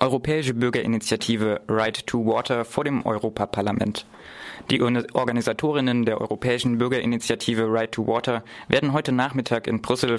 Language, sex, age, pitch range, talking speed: German, male, 20-39, 115-125 Hz, 125 wpm